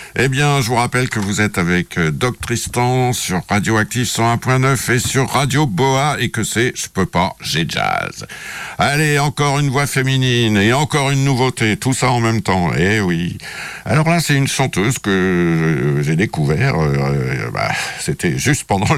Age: 60-79